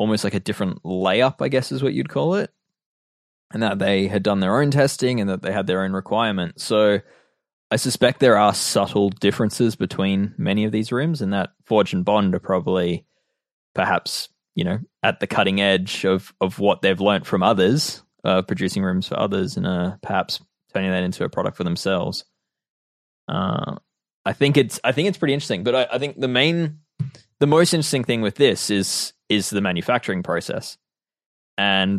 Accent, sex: Australian, male